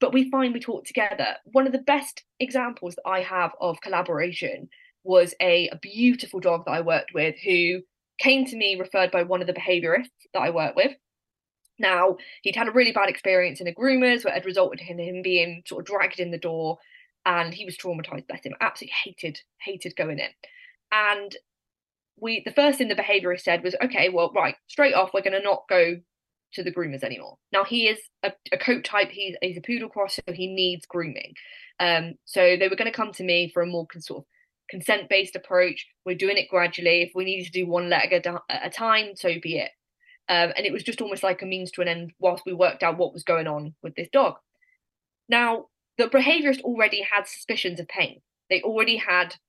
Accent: British